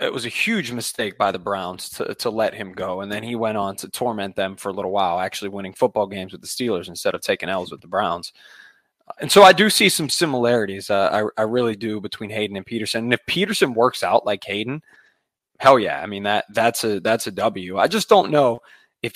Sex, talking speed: male, 240 wpm